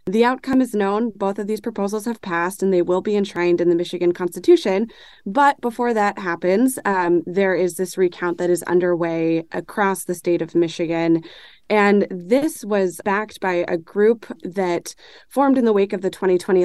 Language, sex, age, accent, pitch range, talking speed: English, female, 20-39, American, 175-215 Hz, 185 wpm